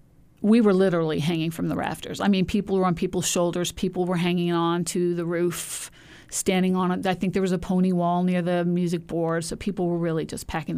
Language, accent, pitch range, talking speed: English, American, 170-200 Hz, 230 wpm